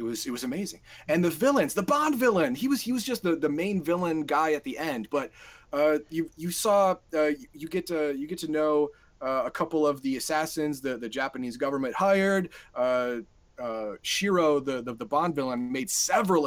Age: 30-49